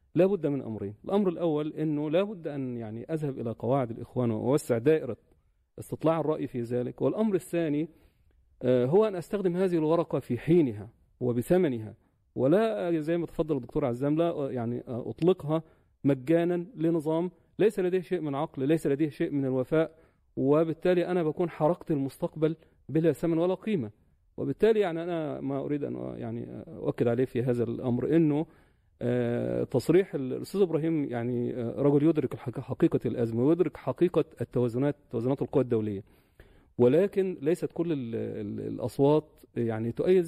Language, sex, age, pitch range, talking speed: Arabic, male, 40-59, 120-165 Hz, 140 wpm